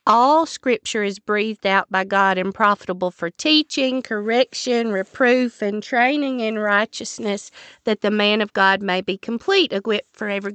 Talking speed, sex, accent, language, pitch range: 160 wpm, female, American, English, 210-255 Hz